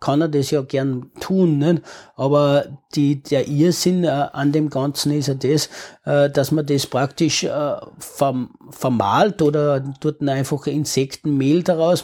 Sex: male